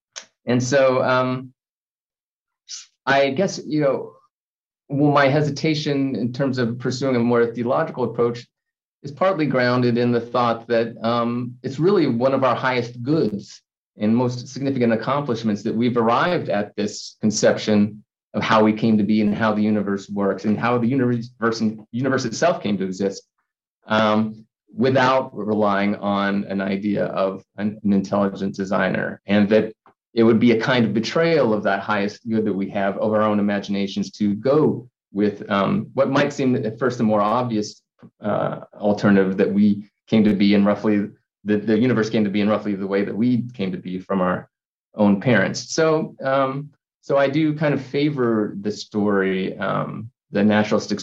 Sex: male